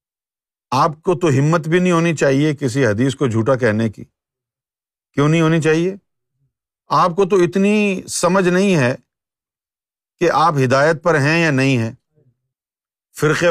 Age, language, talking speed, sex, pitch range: 50-69, Urdu, 150 wpm, male, 130-175 Hz